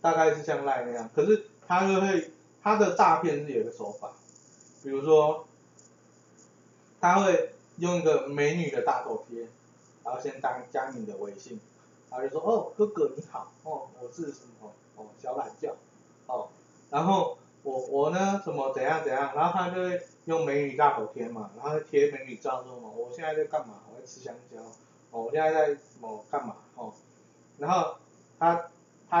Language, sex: Chinese, male